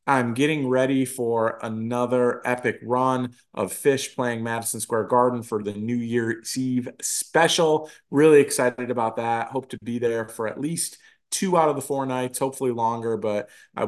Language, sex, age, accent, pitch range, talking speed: English, male, 30-49, American, 115-135 Hz, 175 wpm